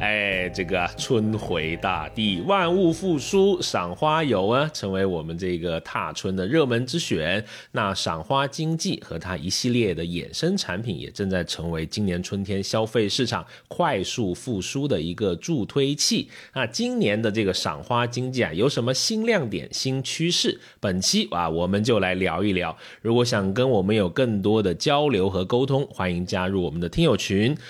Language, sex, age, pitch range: Chinese, male, 30-49, 95-145 Hz